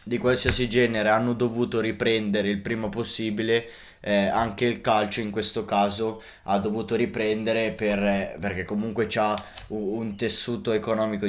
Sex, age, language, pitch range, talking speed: male, 20-39, Italian, 105-115 Hz, 140 wpm